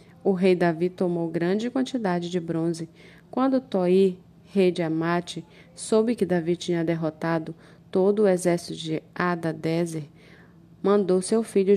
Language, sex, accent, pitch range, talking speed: Portuguese, female, Brazilian, 165-195 Hz, 135 wpm